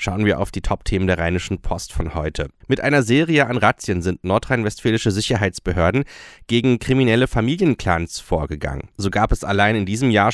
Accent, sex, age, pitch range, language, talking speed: German, male, 30-49, 90-115 Hz, German, 170 wpm